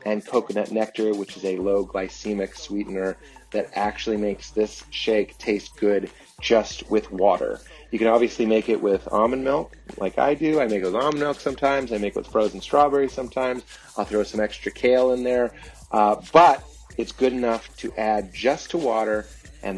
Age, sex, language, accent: 30-49, male, English, American